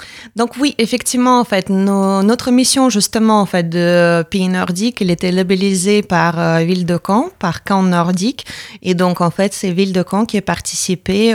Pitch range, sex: 170-205 Hz, female